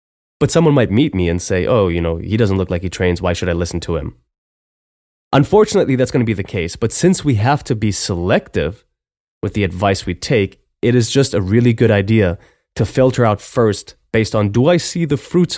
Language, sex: English, male